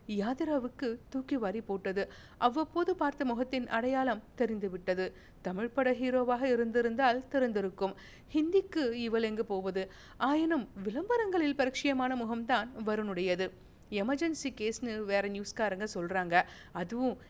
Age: 50-69